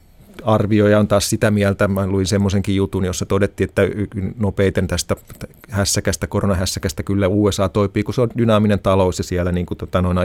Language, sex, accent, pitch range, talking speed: Finnish, male, native, 90-110 Hz, 175 wpm